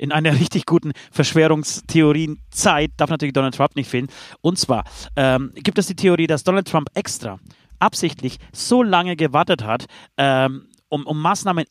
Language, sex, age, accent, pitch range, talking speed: German, male, 40-59, German, 135-180 Hz, 160 wpm